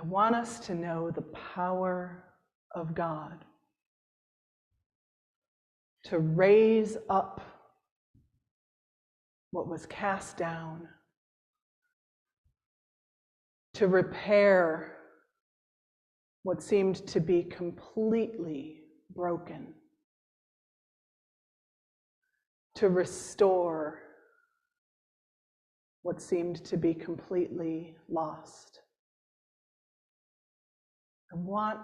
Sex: female